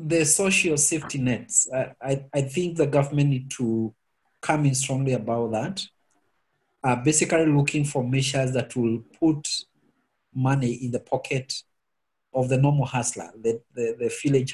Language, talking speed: English, 155 wpm